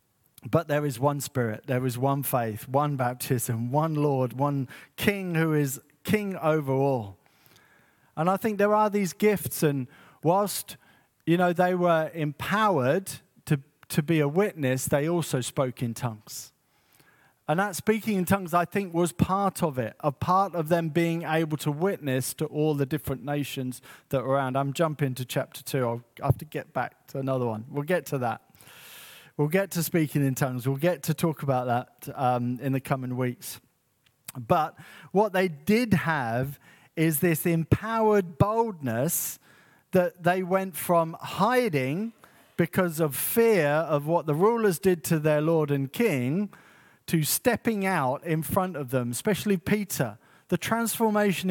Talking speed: 165 wpm